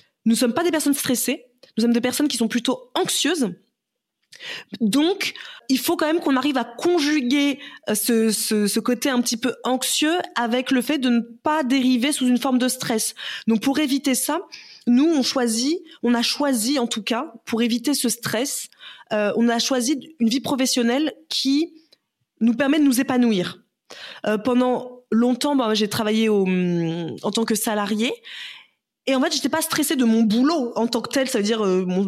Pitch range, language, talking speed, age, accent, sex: 225-280 Hz, French, 190 wpm, 20-39, French, female